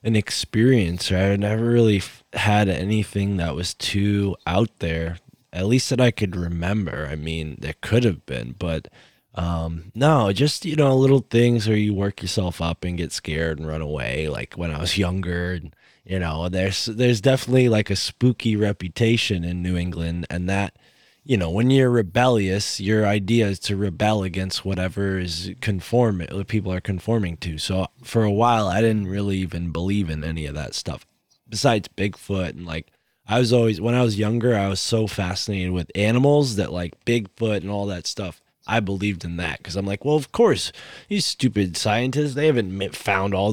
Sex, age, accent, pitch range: male, 20-39, American, 90-115 Hz